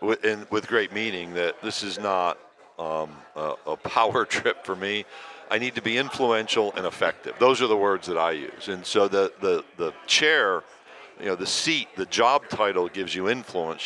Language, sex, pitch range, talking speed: English, male, 95-110 Hz, 195 wpm